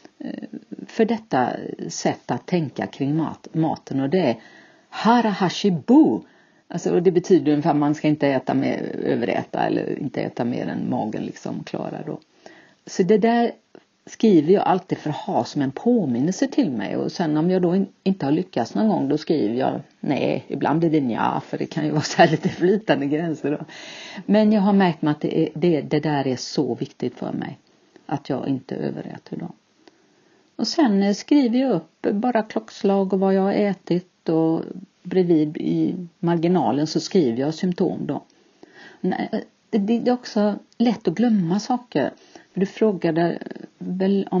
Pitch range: 155-205 Hz